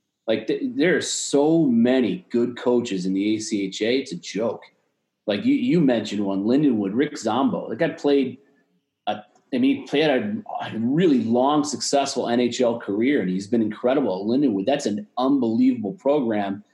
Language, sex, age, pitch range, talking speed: English, male, 30-49, 105-135 Hz, 160 wpm